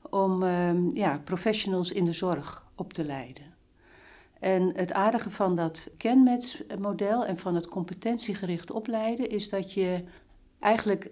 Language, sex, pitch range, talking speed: Dutch, female, 175-215 Hz, 135 wpm